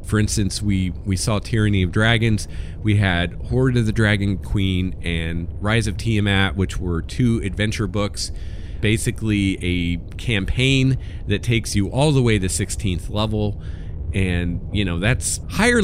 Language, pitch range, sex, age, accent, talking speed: English, 90-115 Hz, male, 40-59, American, 155 wpm